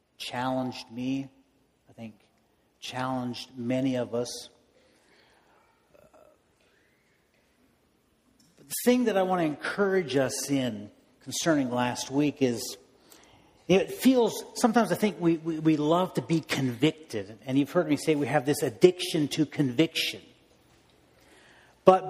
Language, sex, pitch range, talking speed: English, male, 135-185 Hz, 125 wpm